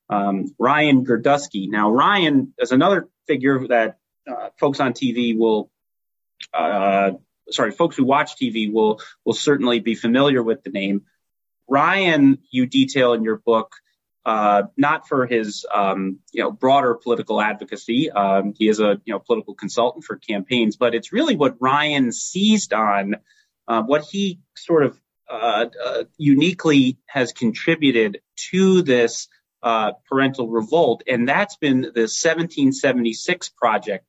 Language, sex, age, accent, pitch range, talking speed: English, male, 30-49, American, 105-145 Hz, 145 wpm